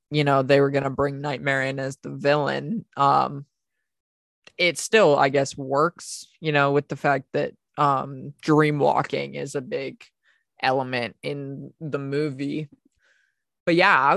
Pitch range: 135-155 Hz